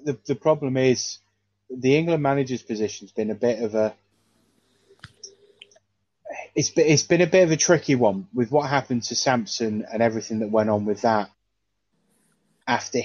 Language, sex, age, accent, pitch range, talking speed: English, male, 20-39, British, 100-115 Hz, 160 wpm